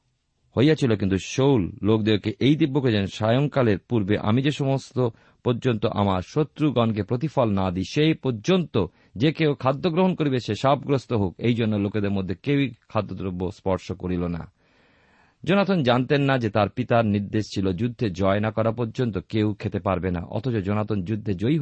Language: Bengali